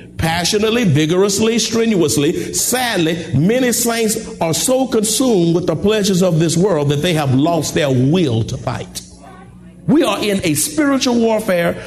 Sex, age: male, 50-69